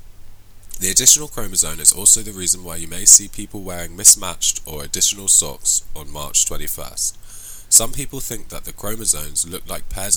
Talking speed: 170 wpm